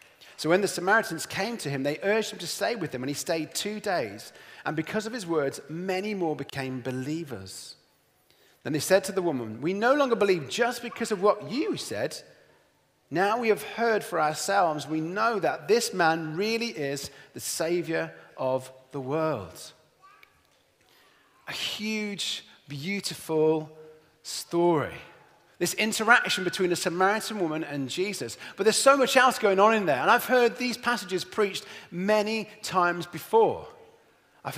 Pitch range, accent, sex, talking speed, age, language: 160-220 Hz, British, male, 160 wpm, 30-49, English